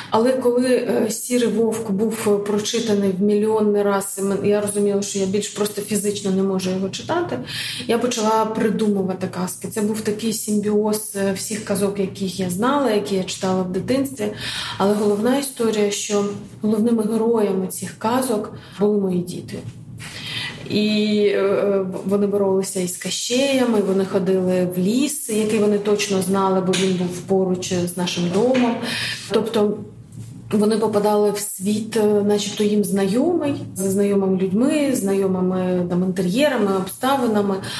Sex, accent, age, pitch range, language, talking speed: female, native, 30-49, 195-220 Hz, Ukrainian, 135 wpm